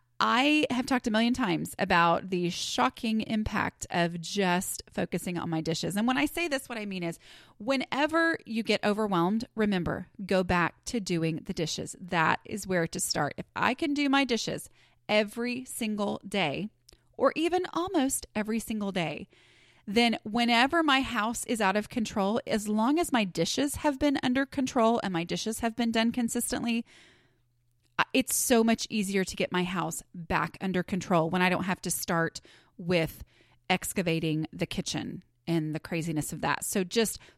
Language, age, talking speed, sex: English, 30-49, 175 wpm, female